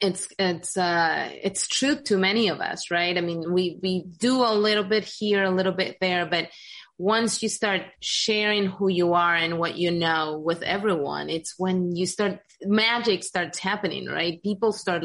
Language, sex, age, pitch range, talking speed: English, female, 30-49, 170-205 Hz, 185 wpm